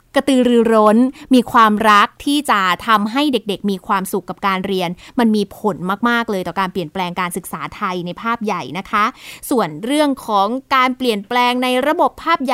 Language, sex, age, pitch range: Thai, female, 20-39, 205-270 Hz